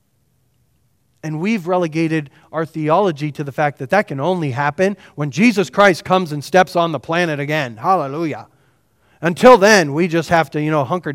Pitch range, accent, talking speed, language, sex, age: 140-185 Hz, American, 180 wpm, English, male, 30-49